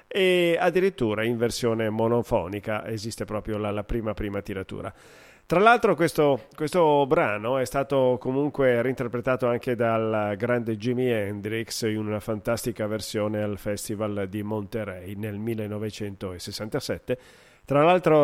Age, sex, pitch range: 40-59, male, 115-145 Hz